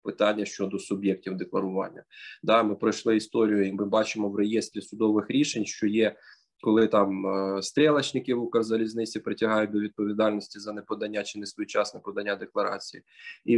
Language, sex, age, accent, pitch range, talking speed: Ukrainian, male, 20-39, native, 105-125 Hz, 145 wpm